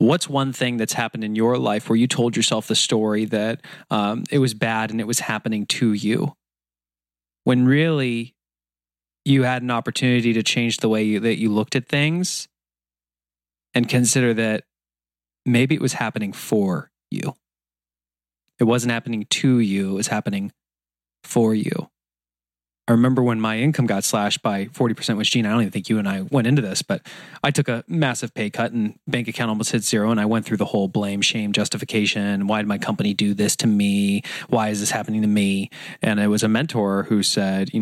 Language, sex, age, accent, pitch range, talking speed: English, male, 20-39, American, 100-125 Hz, 195 wpm